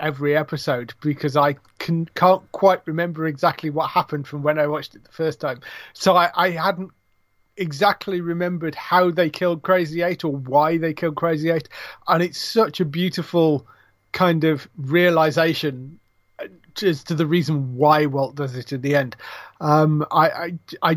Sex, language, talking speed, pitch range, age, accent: male, English, 165 wpm, 140-170 Hz, 30-49, British